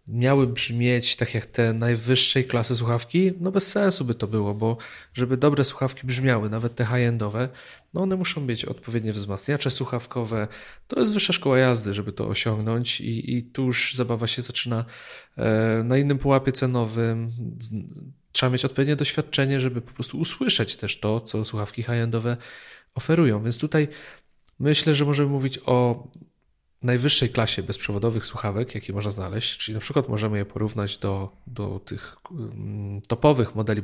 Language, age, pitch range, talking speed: Polish, 30-49, 110-130 Hz, 155 wpm